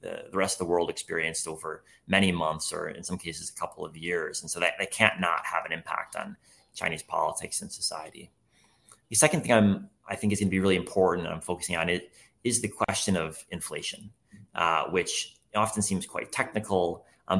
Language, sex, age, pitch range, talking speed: English, male, 30-49, 85-100 Hz, 200 wpm